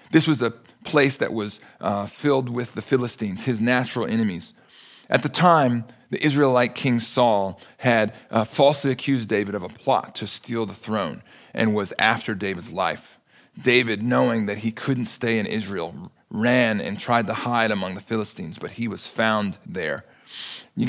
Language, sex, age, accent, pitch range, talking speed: English, male, 40-59, American, 115-145 Hz, 170 wpm